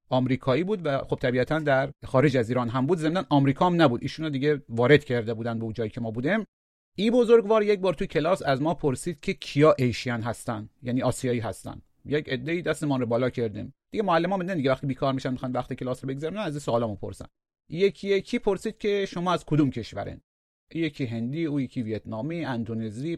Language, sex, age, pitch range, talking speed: Persian, male, 30-49, 120-160 Hz, 195 wpm